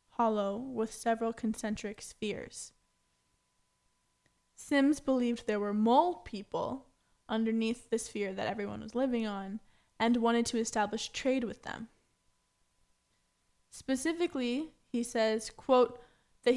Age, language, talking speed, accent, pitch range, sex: 10-29, English, 110 wpm, American, 205-240 Hz, female